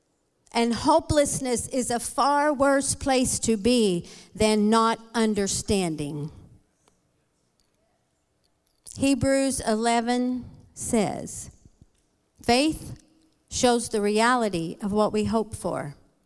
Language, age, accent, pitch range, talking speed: English, 50-69, American, 220-270 Hz, 90 wpm